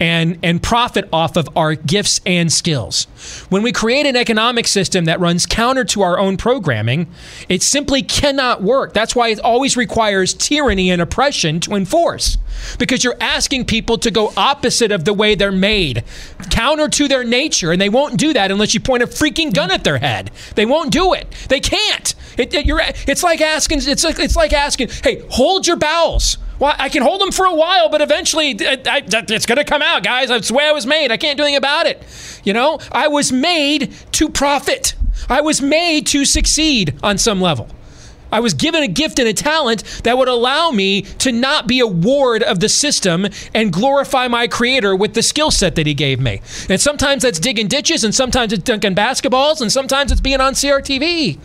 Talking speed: 210 wpm